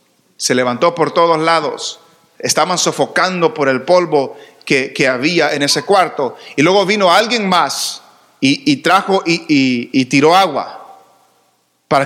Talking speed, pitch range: 145 wpm, 145-195 Hz